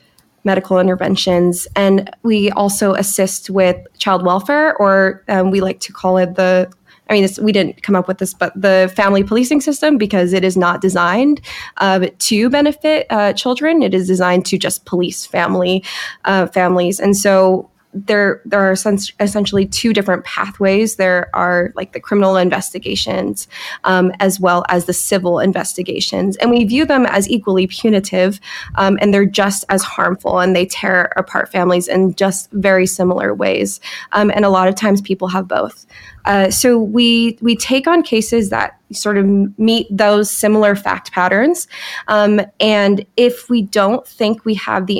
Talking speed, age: 170 wpm, 20-39